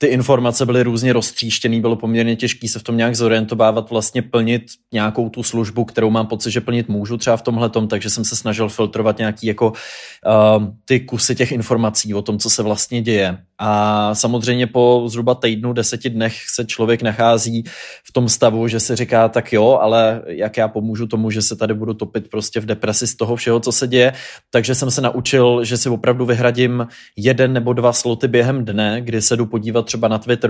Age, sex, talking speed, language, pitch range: 20-39, male, 205 wpm, Czech, 110-125 Hz